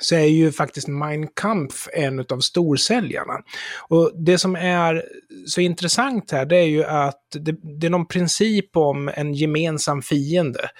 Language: Swedish